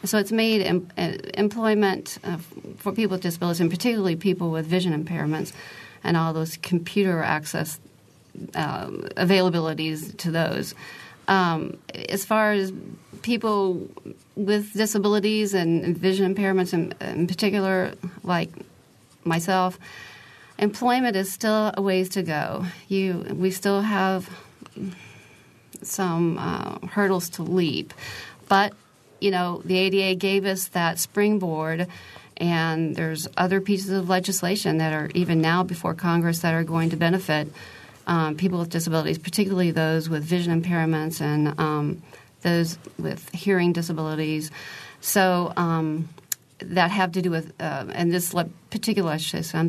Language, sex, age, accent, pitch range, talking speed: English, female, 40-59, American, 160-195 Hz, 130 wpm